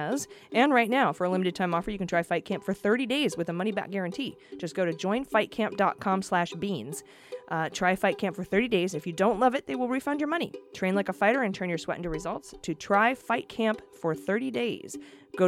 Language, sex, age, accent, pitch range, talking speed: English, female, 30-49, American, 160-210 Hz, 240 wpm